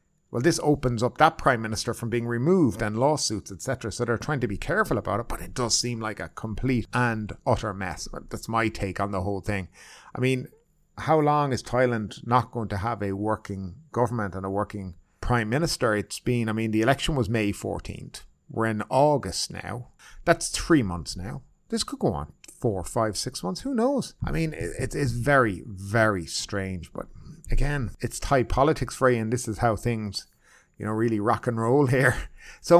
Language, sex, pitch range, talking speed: English, male, 110-150 Hz, 200 wpm